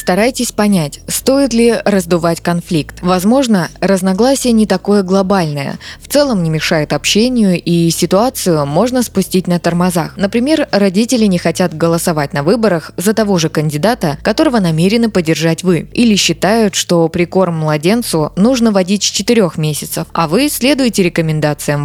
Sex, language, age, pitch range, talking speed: female, Russian, 20-39, 165-215 Hz, 140 wpm